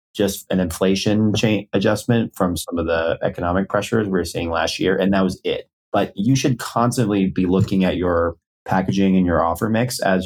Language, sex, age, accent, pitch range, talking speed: English, male, 30-49, American, 90-110 Hz, 195 wpm